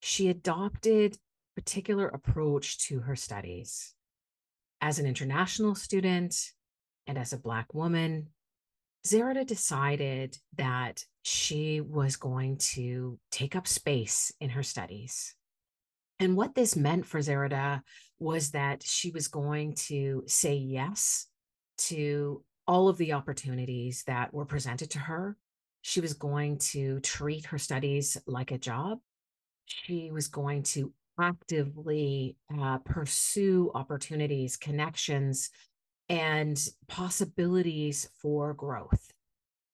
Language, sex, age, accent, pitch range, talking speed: English, female, 40-59, American, 135-175 Hz, 115 wpm